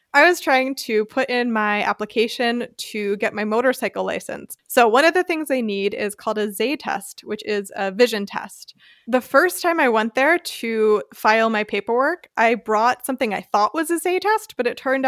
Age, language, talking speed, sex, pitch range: 20-39, English, 205 wpm, female, 215-280 Hz